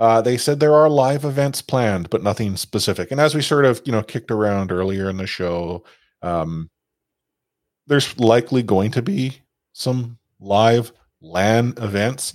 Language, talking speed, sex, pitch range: English, 165 wpm, male, 95-130 Hz